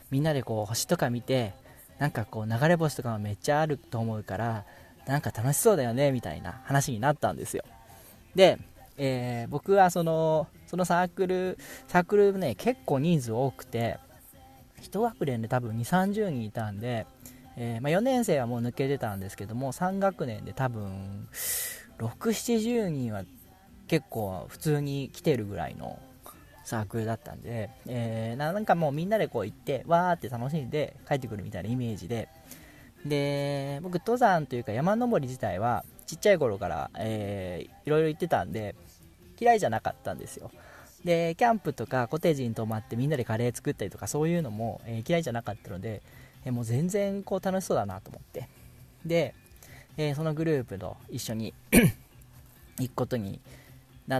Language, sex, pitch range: Japanese, male, 115-160 Hz